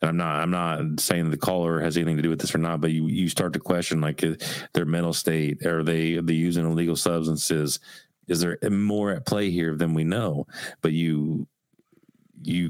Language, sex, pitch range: English, male, 80-90 Hz